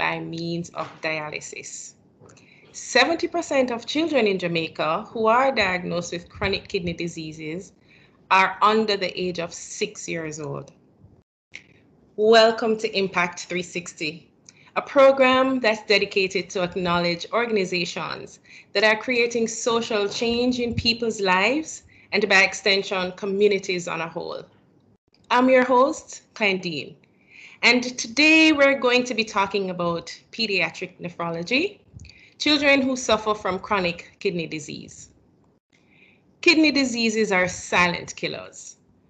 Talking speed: 115 wpm